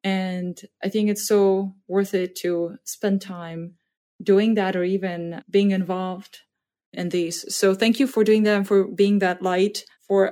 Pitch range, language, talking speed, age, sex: 175-205 Hz, English, 175 wpm, 20-39, female